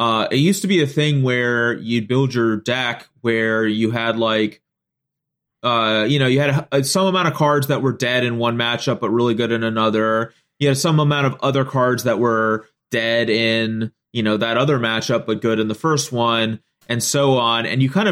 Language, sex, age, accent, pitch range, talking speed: English, male, 30-49, American, 110-140 Hz, 220 wpm